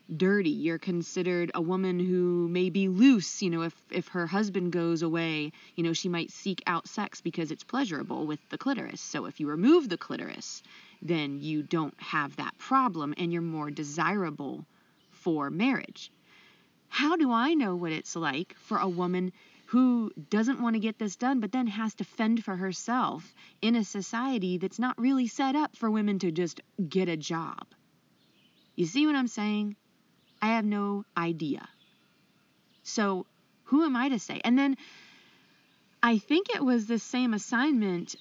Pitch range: 175-235 Hz